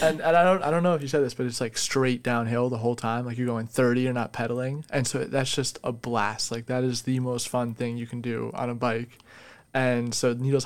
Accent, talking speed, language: American, 270 wpm, English